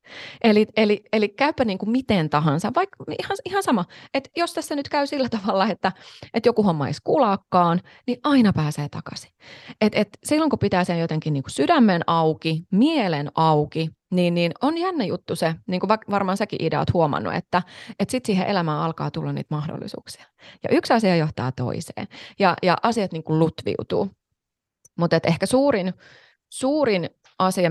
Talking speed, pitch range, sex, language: 175 wpm, 160-235 Hz, female, Finnish